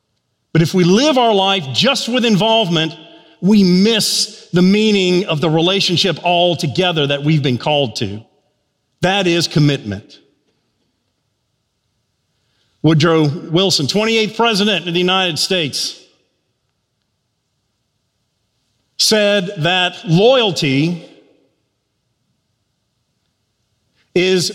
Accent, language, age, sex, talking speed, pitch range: American, English, 40-59, male, 90 wpm, 130-210 Hz